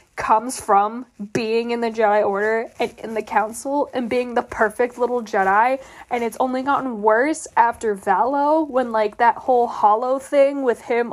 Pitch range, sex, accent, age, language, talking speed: 240-335 Hz, female, American, 10-29, English, 175 wpm